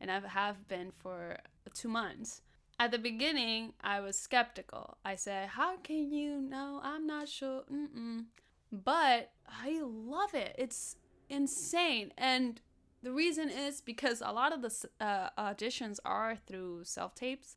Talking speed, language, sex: 150 wpm, English, female